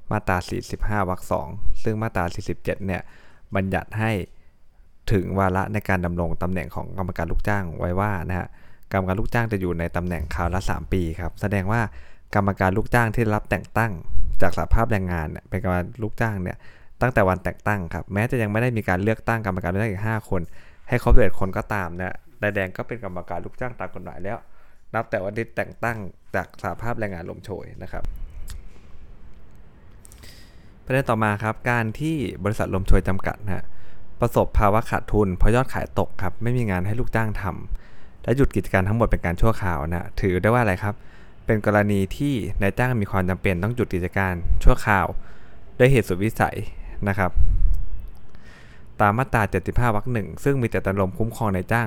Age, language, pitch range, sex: 20-39, Thai, 90-110 Hz, male